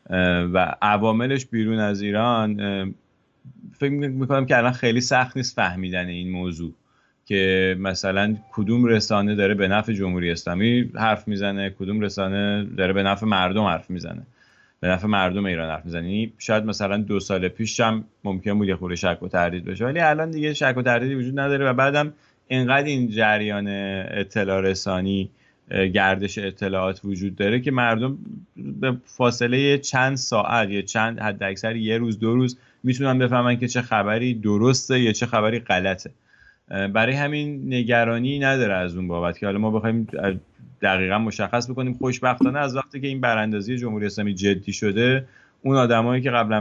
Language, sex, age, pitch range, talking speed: English, male, 30-49, 100-125 Hz, 160 wpm